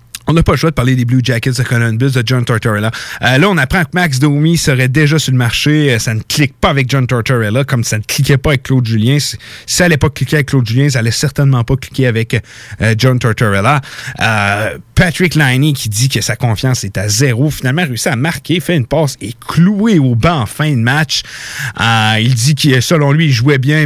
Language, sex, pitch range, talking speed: French, male, 120-150 Hz, 235 wpm